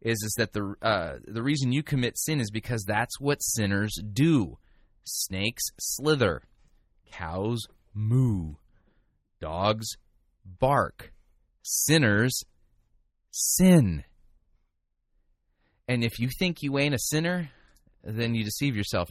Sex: male